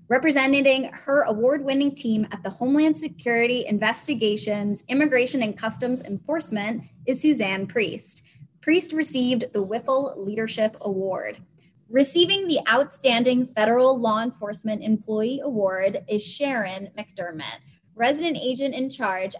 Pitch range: 195-265 Hz